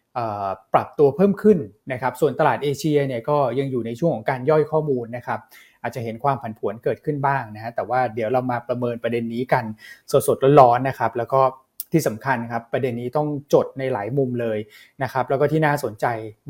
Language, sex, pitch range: Thai, male, 120-145 Hz